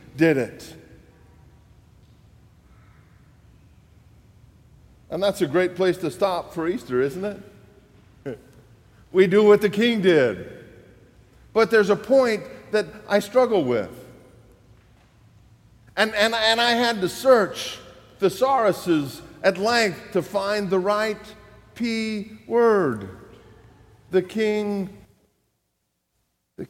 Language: English